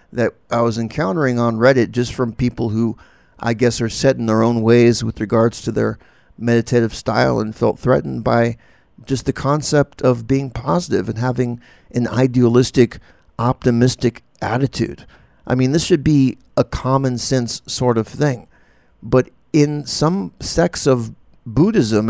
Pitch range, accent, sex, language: 115-130 Hz, American, male, English